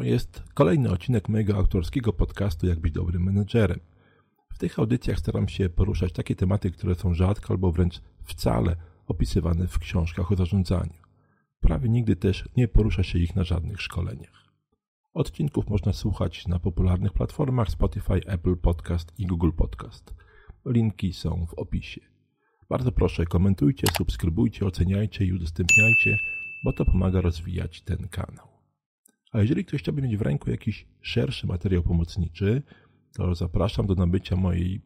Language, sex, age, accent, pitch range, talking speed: Polish, male, 40-59, native, 90-105 Hz, 145 wpm